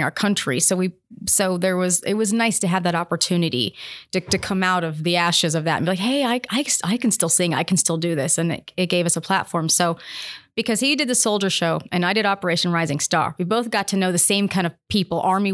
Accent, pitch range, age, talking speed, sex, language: American, 170-200 Hz, 30-49, 265 wpm, female, English